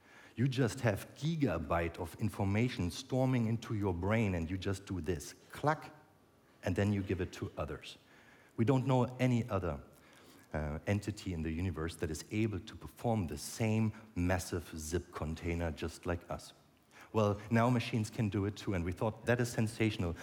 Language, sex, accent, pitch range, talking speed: English, male, German, 95-120 Hz, 175 wpm